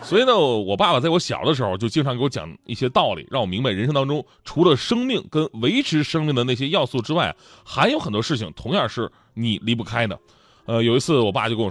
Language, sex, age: Chinese, male, 20-39